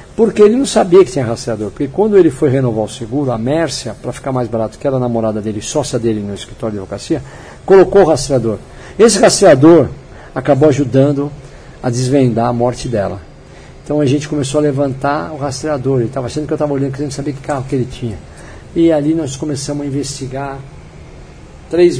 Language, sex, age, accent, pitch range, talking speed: Portuguese, male, 60-79, Brazilian, 125-160 Hz, 195 wpm